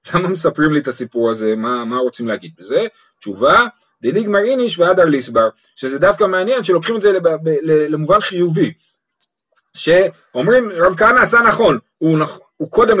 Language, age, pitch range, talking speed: Hebrew, 30-49, 140-210 Hz, 150 wpm